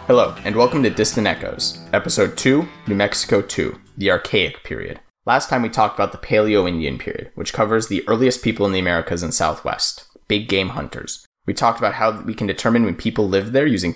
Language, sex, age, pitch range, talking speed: English, male, 20-39, 90-110 Hz, 200 wpm